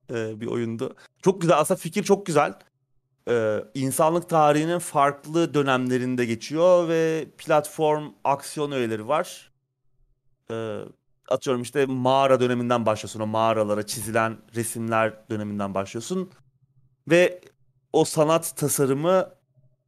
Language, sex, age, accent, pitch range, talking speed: Turkish, male, 30-49, native, 120-145 Hz, 105 wpm